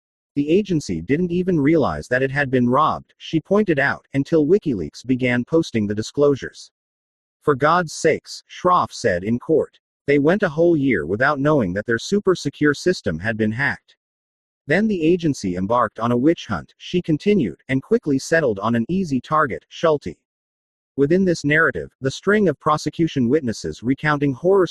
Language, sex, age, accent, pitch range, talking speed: English, male, 40-59, American, 115-165 Hz, 165 wpm